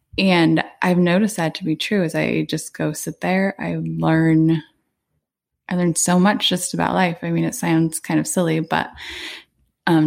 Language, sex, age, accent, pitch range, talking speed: English, female, 20-39, American, 155-185 Hz, 185 wpm